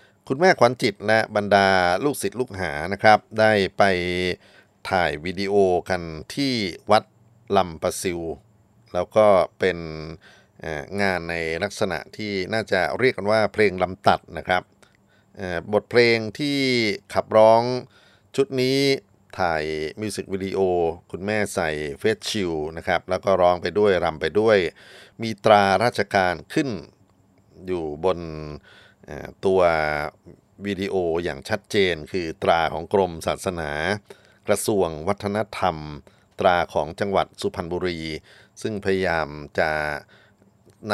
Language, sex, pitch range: Thai, male, 85-105 Hz